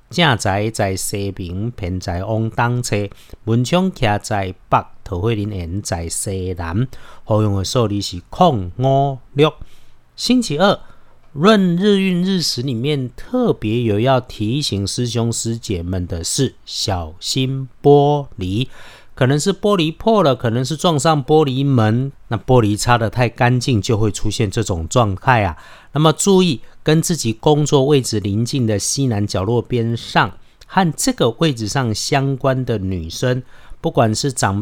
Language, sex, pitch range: Chinese, male, 105-145 Hz